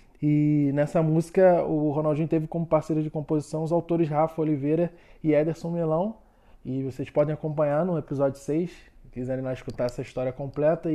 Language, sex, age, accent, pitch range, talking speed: Portuguese, male, 20-39, Brazilian, 135-165 Hz, 170 wpm